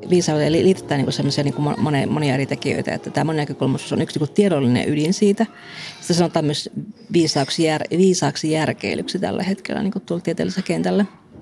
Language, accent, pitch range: Finnish, native, 150-195 Hz